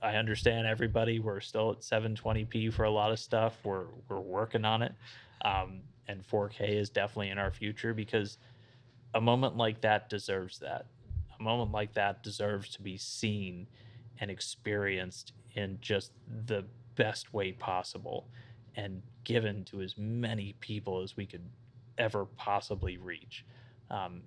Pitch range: 100-120 Hz